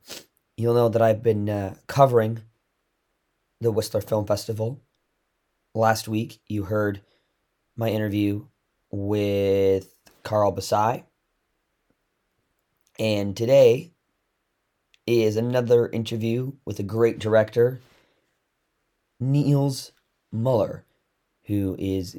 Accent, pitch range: American, 100-120 Hz